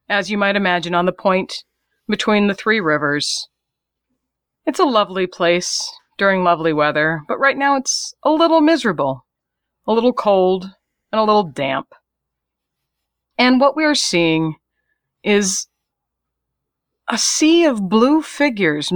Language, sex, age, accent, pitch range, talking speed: English, female, 40-59, American, 175-265 Hz, 135 wpm